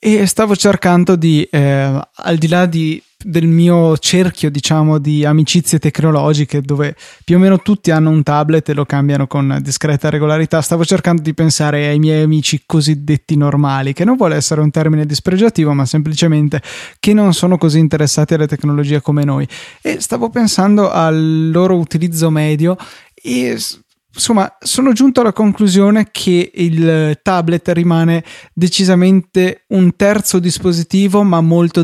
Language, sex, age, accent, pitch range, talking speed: Italian, male, 20-39, native, 150-175 Hz, 150 wpm